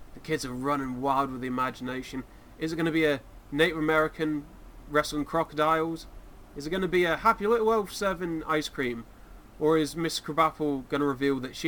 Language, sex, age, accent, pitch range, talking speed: English, male, 30-49, British, 125-160 Hz, 200 wpm